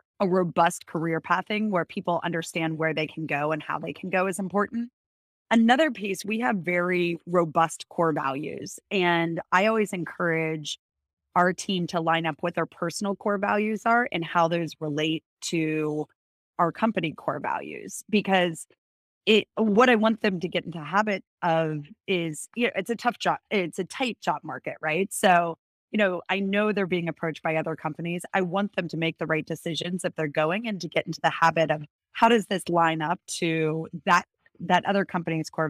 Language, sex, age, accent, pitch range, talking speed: English, female, 30-49, American, 160-195 Hz, 195 wpm